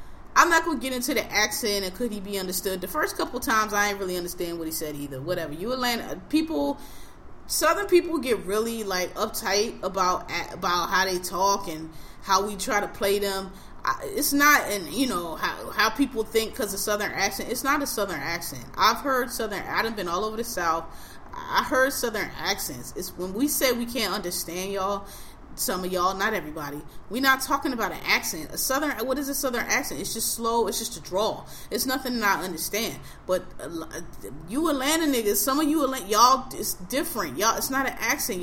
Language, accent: English, American